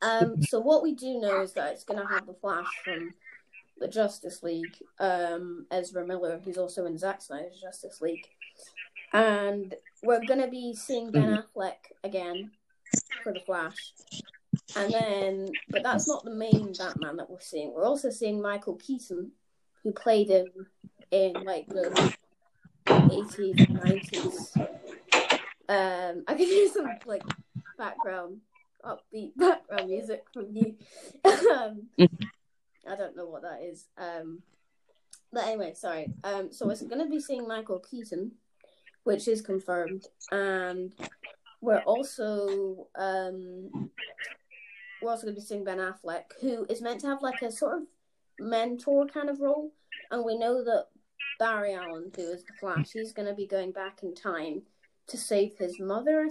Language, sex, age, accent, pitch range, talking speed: English, female, 20-39, British, 185-235 Hz, 155 wpm